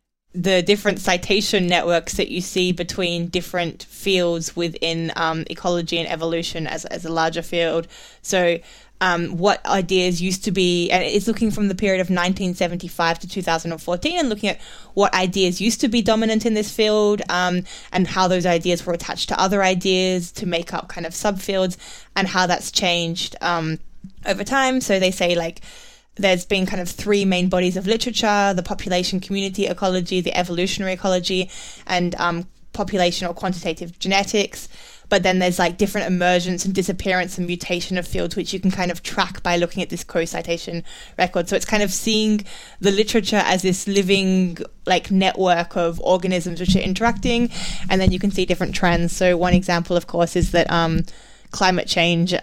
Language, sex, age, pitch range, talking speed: English, female, 20-39, 175-195 Hz, 180 wpm